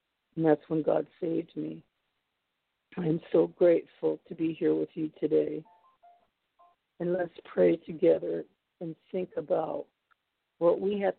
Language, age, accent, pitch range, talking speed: English, 50-69, American, 155-175 Hz, 135 wpm